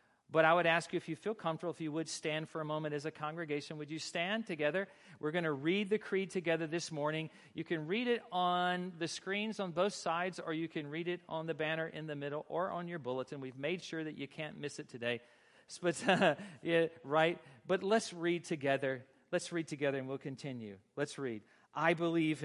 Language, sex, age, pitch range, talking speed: English, male, 40-59, 125-165 Hz, 215 wpm